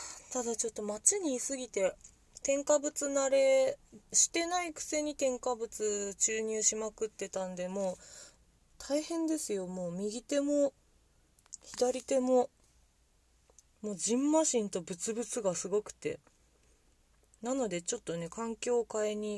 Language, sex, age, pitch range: Japanese, female, 30-49, 180-260 Hz